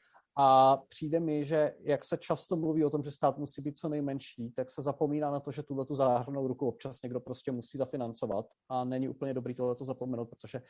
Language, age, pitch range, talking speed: Slovak, 30-49, 130-150 Hz, 210 wpm